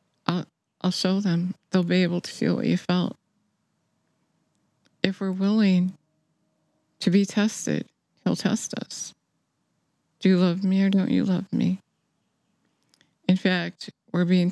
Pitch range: 170-200 Hz